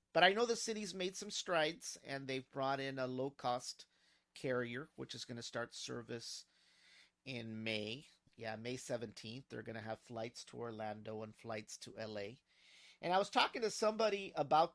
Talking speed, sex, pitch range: 185 wpm, male, 115-145 Hz